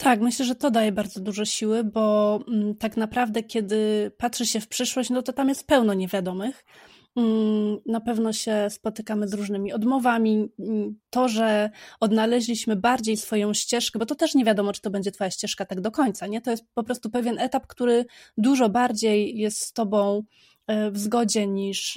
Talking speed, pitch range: 175 wpm, 210-245 Hz